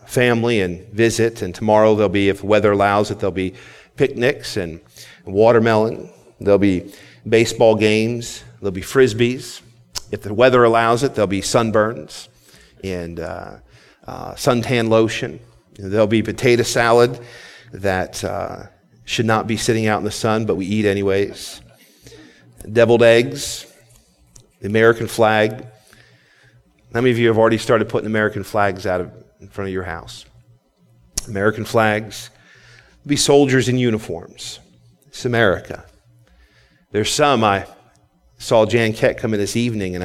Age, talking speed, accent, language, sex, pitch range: 40-59, 140 wpm, American, English, male, 95-120 Hz